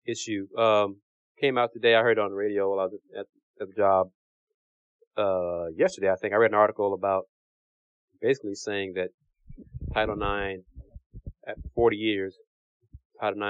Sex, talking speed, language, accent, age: male, 155 wpm, English, American, 30-49